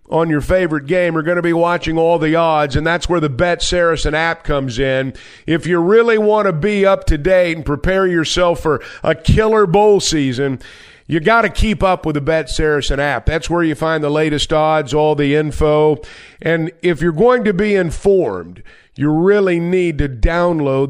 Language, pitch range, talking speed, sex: English, 150-185 Hz, 200 wpm, male